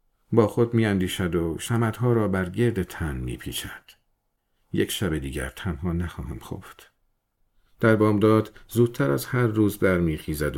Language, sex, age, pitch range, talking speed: Persian, male, 50-69, 90-115 Hz, 145 wpm